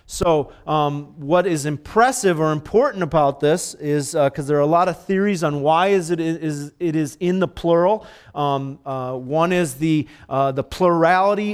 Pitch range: 140-175 Hz